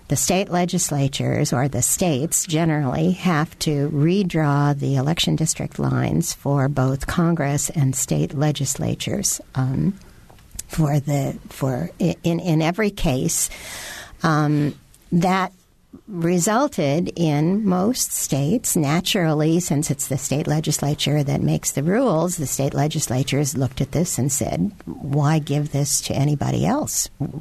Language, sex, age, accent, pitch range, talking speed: English, female, 50-69, American, 145-175 Hz, 125 wpm